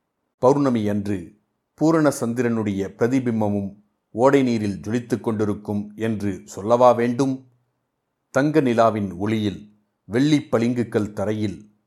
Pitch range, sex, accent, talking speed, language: 105-125 Hz, male, native, 65 wpm, Tamil